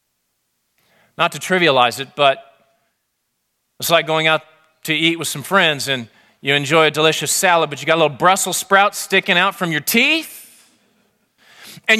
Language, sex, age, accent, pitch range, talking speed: English, male, 40-59, American, 155-225 Hz, 165 wpm